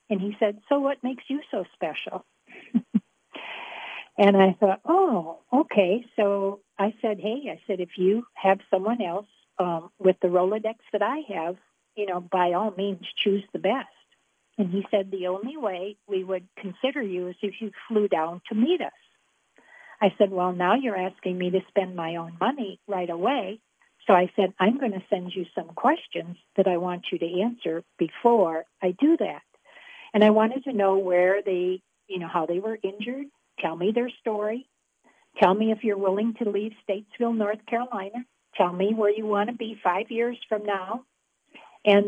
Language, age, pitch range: English, 60-79, 185-220 Hz